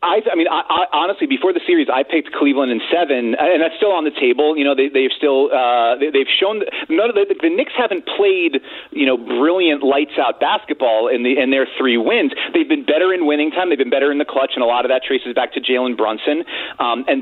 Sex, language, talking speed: male, English, 255 wpm